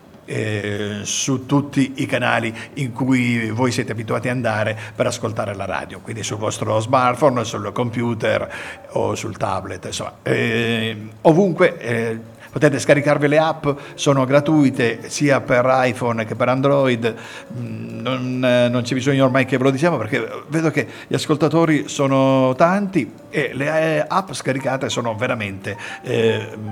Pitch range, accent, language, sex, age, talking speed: 115-150 Hz, native, Italian, male, 50-69, 150 wpm